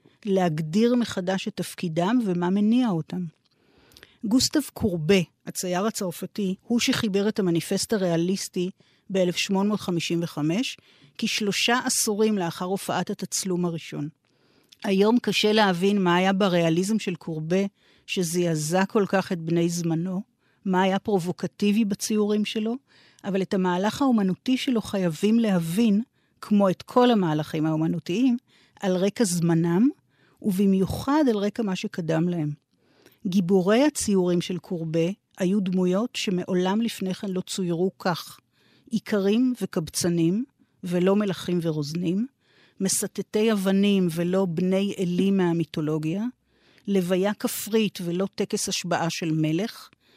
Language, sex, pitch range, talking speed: Hebrew, female, 175-215 Hz, 110 wpm